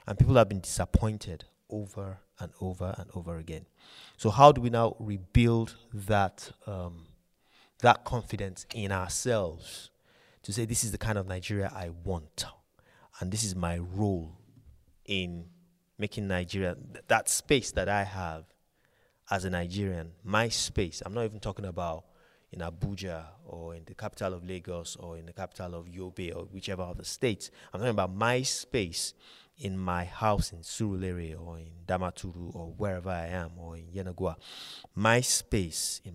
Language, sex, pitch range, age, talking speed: English, male, 90-110 Hz, 30-49, 160 wpm